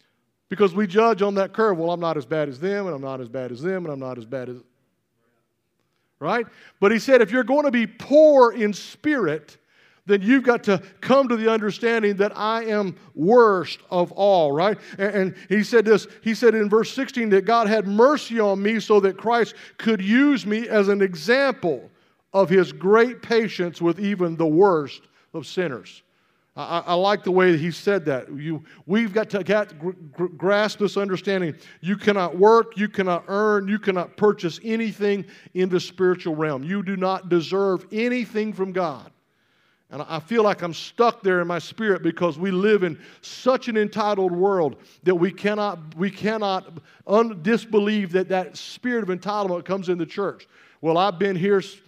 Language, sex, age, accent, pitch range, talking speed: English, male, 50-69, American, 175-215 Hz, 190 wpm